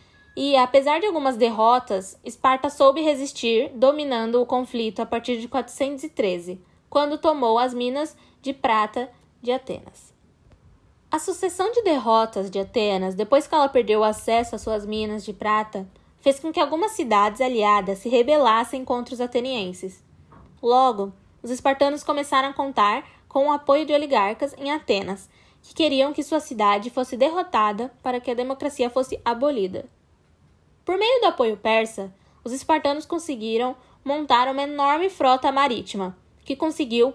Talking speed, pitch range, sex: 150 wpm, 230-285 Hz, female